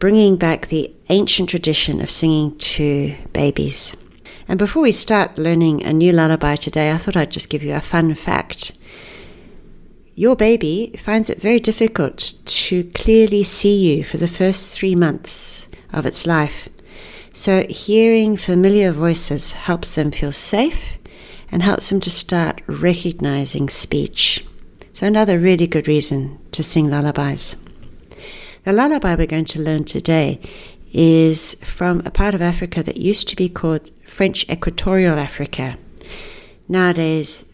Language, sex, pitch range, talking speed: English, female, 155-195 Hz, 145 wpm